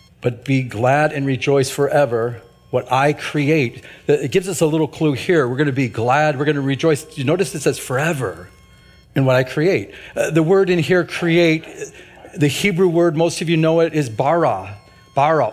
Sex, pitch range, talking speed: male, 130-165 Hz, 190 wpm